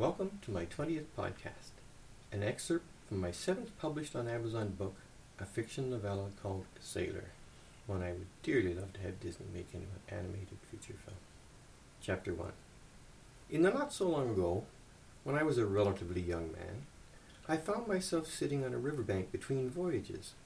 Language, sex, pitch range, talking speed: English, male, 95-145 Hz, 165 wpm